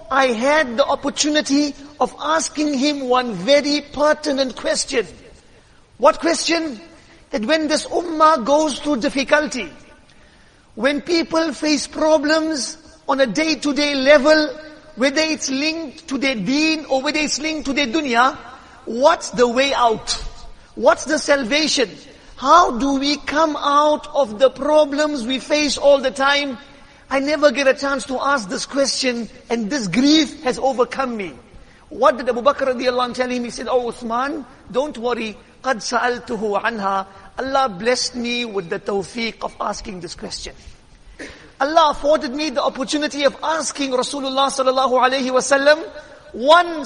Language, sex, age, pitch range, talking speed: English, male, 50-69, 255-305 Hz, 145 wpm